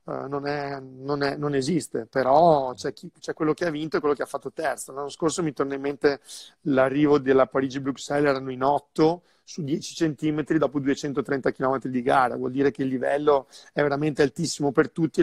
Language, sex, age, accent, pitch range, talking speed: Italian, male, 40-59, native, 135-160 Hz, 200 wpm